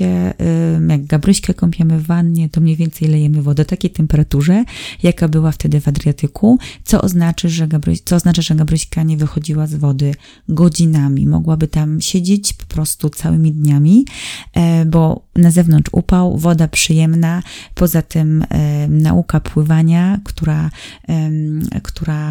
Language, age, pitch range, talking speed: Polish, 30-49, 155-180 Hz, 130 wpm